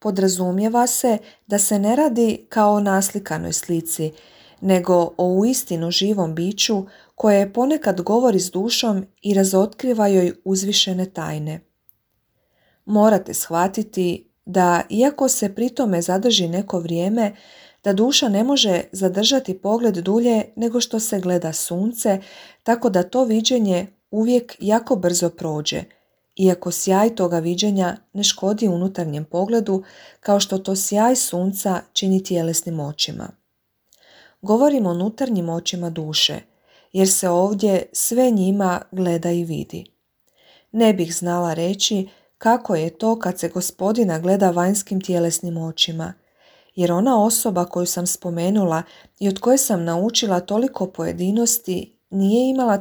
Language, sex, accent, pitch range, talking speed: Croatian, female, native, 175-220 Hz, 125 wpm